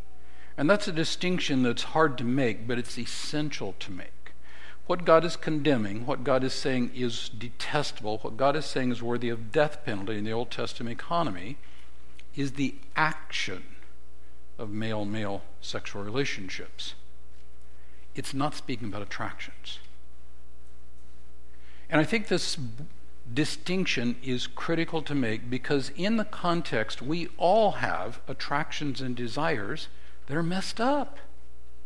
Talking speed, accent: 135 wpm, American